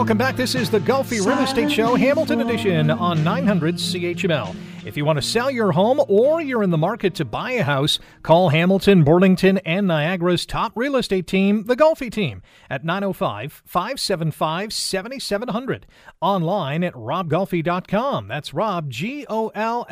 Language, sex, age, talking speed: English, male, 40-59, 165 wpm